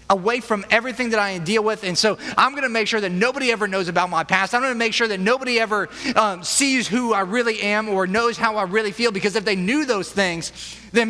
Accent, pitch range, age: American, 175-230 Hz, 30-49